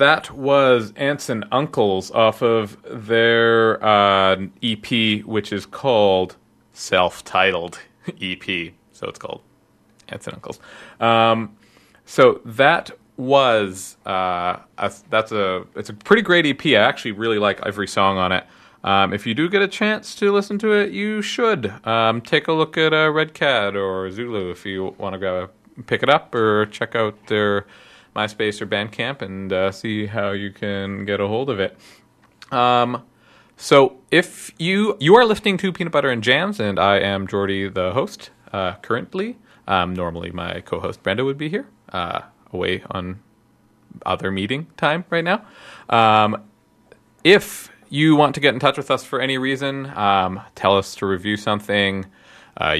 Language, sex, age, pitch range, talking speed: English, male, 30-49, 100-140 Hz, 165 wpm